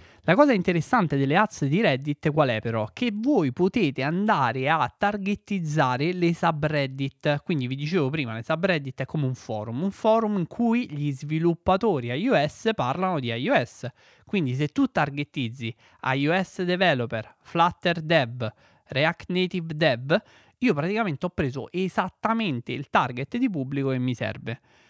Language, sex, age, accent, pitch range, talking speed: Italian, male, 20-39, native, 130-185 Hz, 145 wpm